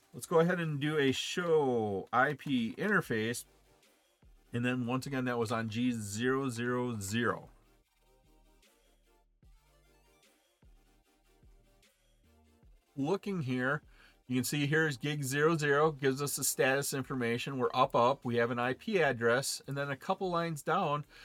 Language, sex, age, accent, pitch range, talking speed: English, male, 40-59, American, 120-150 Hz, 125 wpm